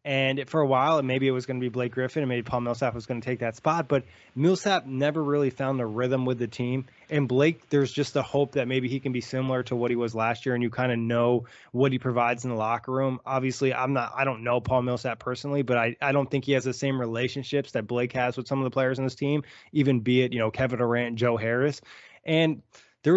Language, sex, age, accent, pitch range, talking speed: English, male, 20-39, American, 120-135 Hz, 265 wpm